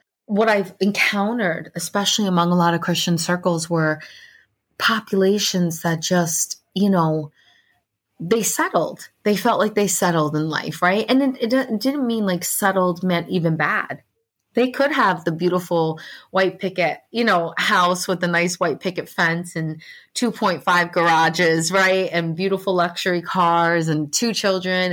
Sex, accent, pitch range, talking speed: female, American, 165-195 Hz, 150 wpm